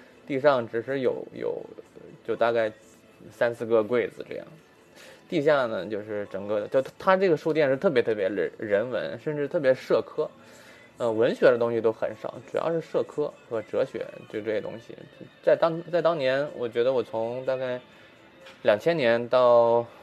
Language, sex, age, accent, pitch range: Chinese, male, 20-39, native, 115-190 Hz